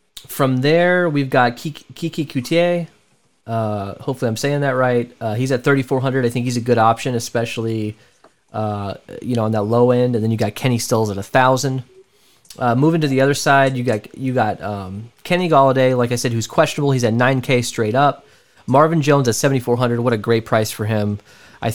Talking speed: 205 wpm